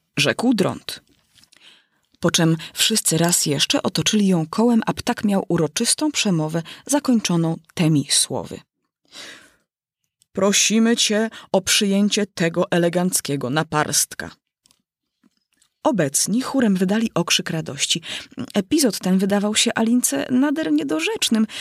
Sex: female